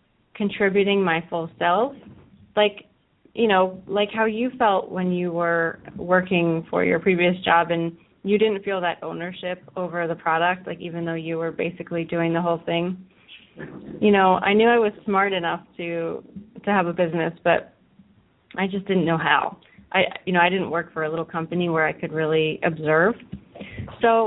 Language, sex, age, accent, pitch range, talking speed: English, female, 30-49, American, 170-205 Hz, 180 wpm